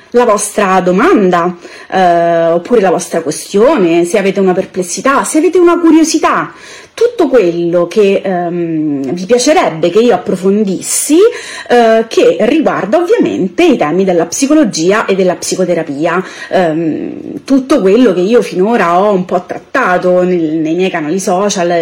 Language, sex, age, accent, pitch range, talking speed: Italian, female, 30-49, native, 180-285 Hz, 140 wpm